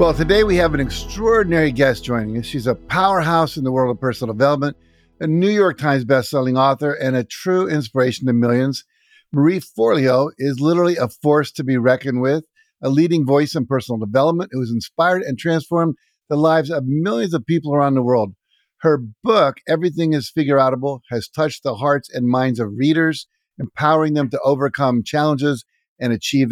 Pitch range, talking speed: 125-155 Hz, 180 wpm